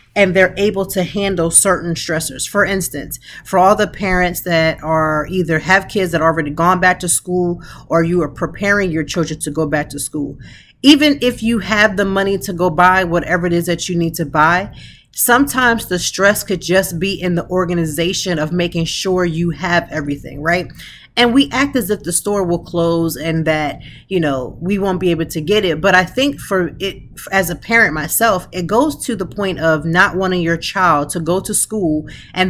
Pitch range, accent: 165-200 Hz, American